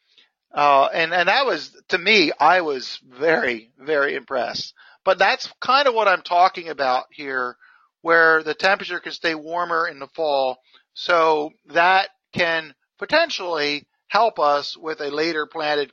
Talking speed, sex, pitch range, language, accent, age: 150 wpm, male, 150-190 Hz, English, American, 50-69